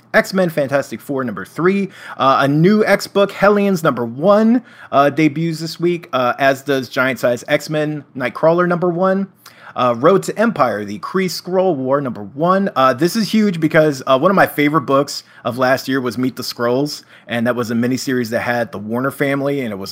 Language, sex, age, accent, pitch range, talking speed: English, male, 30-49, American, 130-185 Hz, 210 wpm